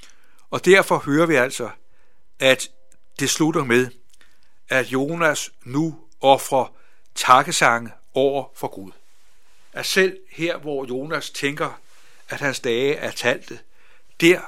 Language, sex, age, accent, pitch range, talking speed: Danish, male, 60-79, native, 125-160 Hz, 120 wpm